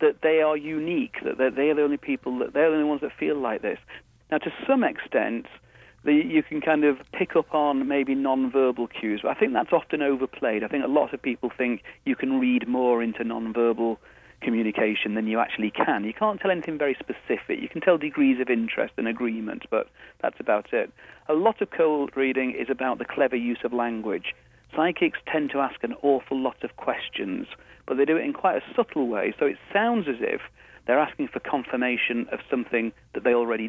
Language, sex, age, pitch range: English, male, 40-59, 125-190 Hz